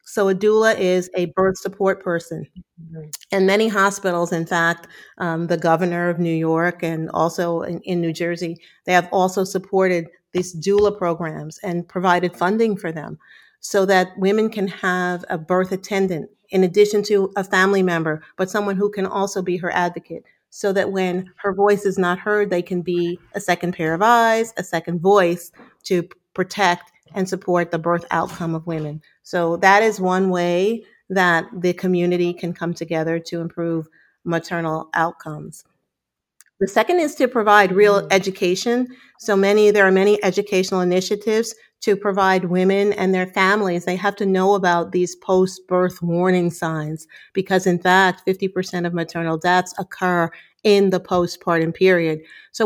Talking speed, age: 165 wpm, 40-59